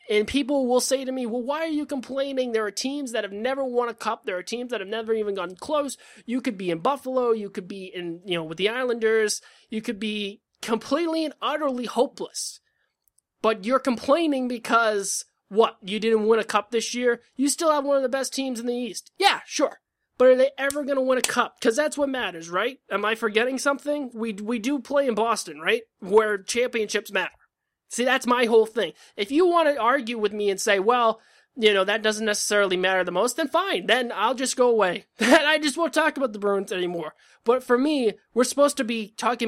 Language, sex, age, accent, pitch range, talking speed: English, male, 20-39, American, 215-275 Hz, 225 wpm